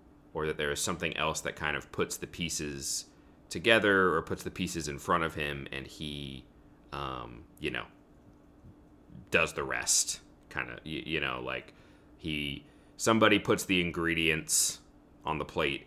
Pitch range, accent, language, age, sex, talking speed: 70-80 Hz, American, English, 30-49, male, 165 wpm